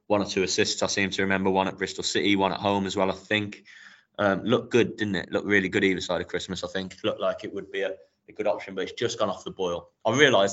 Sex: male